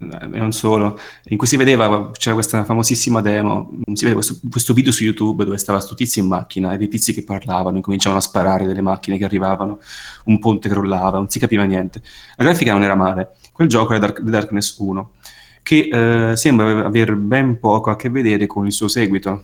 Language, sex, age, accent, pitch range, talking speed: Italian, male, 30-49, native, 95-115 Hz, 205 wpm